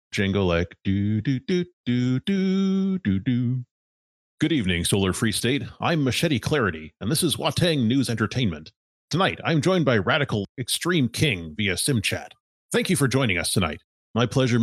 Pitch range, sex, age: 95-135 Hz, male, 30-49